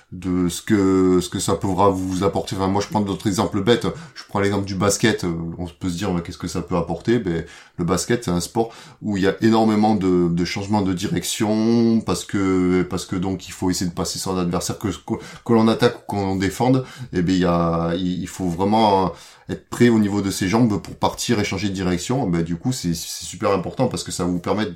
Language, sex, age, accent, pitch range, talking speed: French, male, 30-49, French, 90-110 Hz, 240 wpm